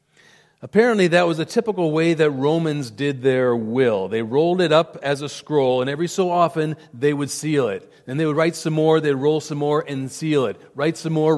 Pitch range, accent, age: 145-180 Hz, American, 40-59